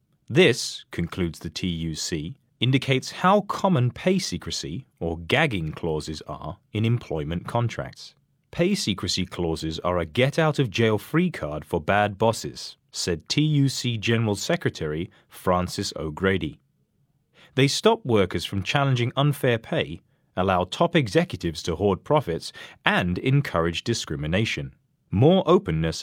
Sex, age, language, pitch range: male, 30-49, Chinese, 90-145 Hz